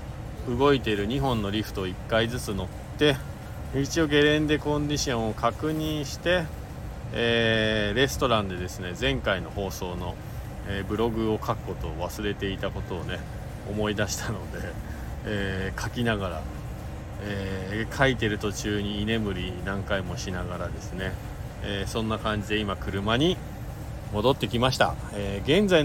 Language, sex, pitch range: Japanese, male, 100-130 Hz